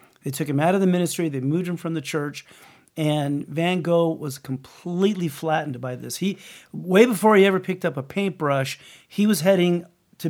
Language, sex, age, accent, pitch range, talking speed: English, male, 40-59, American, 145-180 Hz, 200 wpm